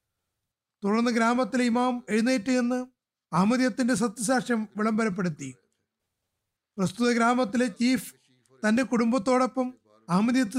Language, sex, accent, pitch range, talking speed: Malayalam, male, native, 195-255 Hz, 80 wpm